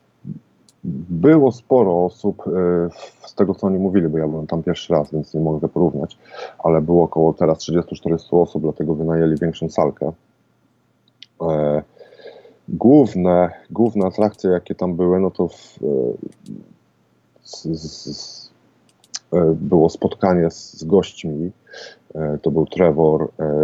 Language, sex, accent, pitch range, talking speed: Polish, male, native, 80-90 Hz, 110 wpm